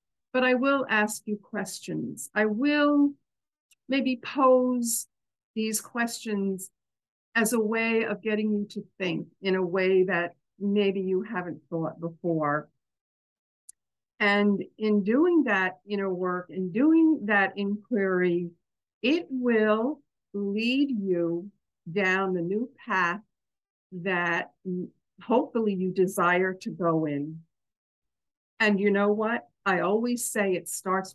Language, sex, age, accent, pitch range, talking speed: English, female, 50-69, American, 180-225 Hz, 120 wpm